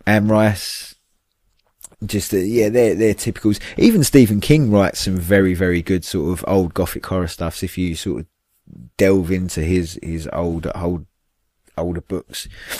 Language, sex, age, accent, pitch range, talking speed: English, male, 20-39, British, 80-100 Hz, 155 wpm